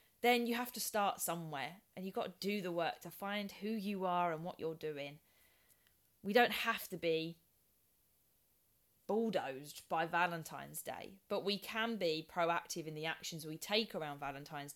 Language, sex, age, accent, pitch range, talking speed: English, female, 20-39, British, 155-195 Hz, 175 wpm